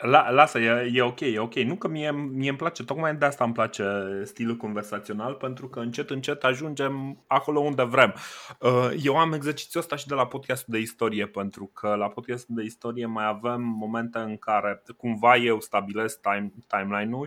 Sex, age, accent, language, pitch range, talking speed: male, 20-39, native, Romanian, 110-140 Hz, 190 wpm